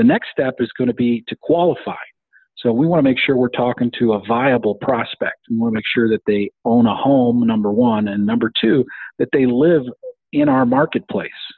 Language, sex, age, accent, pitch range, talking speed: English, male, 40-59, American, 115-140 Hz, 220 wpm